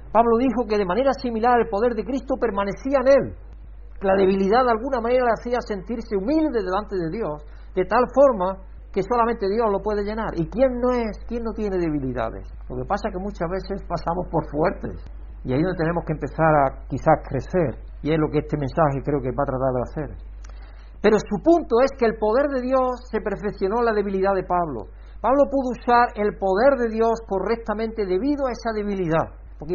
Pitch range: 155-225 Hz